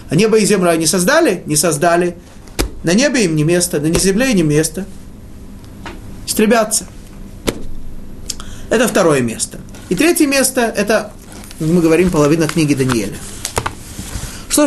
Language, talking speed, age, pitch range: Russian, 130 wpm, 30-49, 145-215 Hz